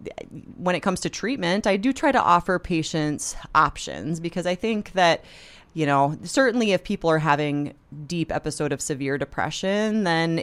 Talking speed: 165 wpm